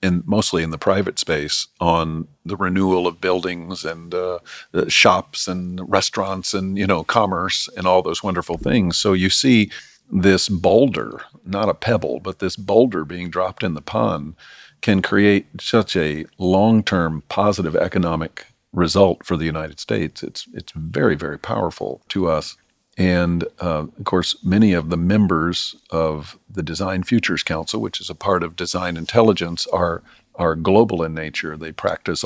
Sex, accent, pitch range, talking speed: male, American, 80-95 Hz, 160 wpm